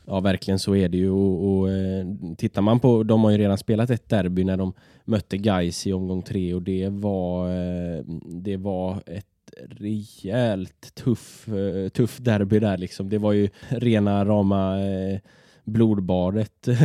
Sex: male